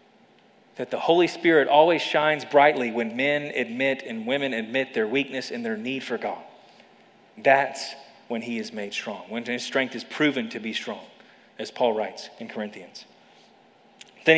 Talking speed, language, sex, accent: 165 wpm, English, male, American